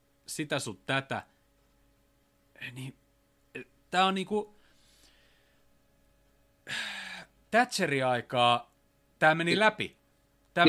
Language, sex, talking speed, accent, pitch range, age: Finnish, male, 75 wpm, native, 115-175 Hz, 30-49